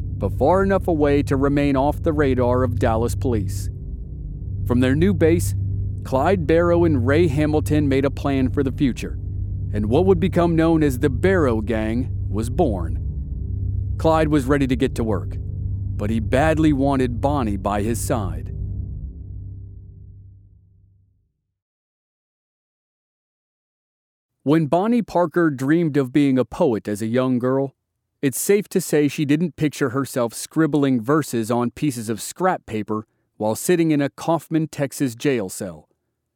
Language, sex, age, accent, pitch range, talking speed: English, male, 40-59, American, 100-150 Hz, 145 wpm